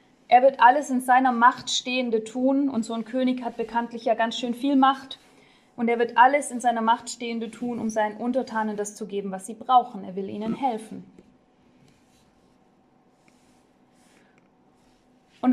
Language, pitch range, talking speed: German, 220-270 Hz, 160 wpm